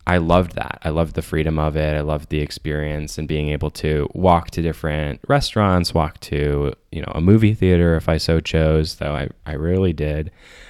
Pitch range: 80-95 Hz